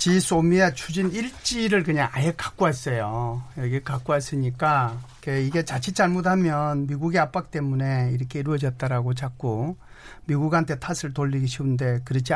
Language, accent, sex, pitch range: Korean, native, male, 130-165 Hz